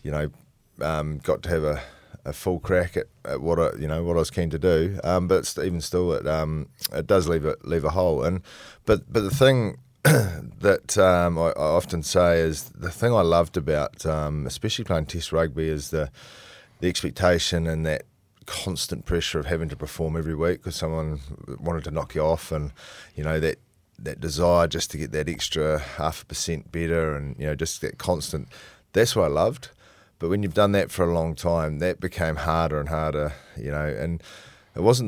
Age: 30-49